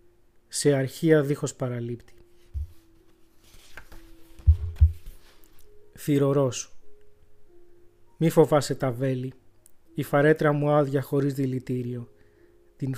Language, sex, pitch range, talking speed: Greek, male, 115-150 Hz, 75 wpm